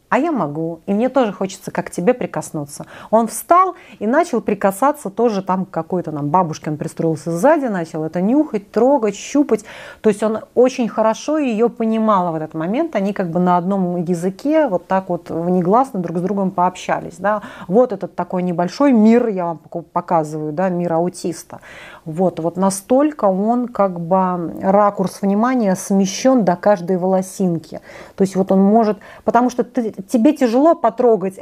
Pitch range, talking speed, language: 180-230 Hz, 170 wpm, Russian